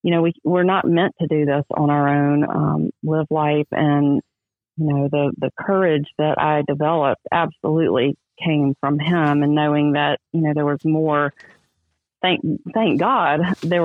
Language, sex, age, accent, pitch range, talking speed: English, female, 40-59, American, 140-160 Hz, 175 wpm